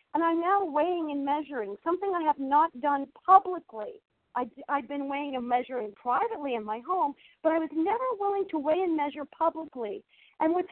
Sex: female